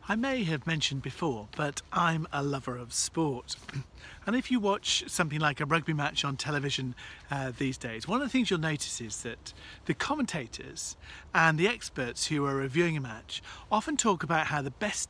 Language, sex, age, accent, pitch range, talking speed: English, male, 40-59, British, 130-175 Hz, 195 wpm